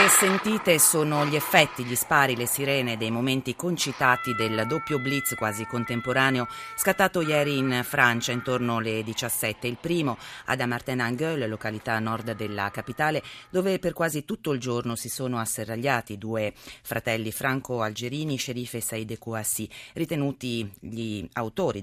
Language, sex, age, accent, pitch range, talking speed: Italian, female, 30-49, native, 110-140 Hz, 145 wpm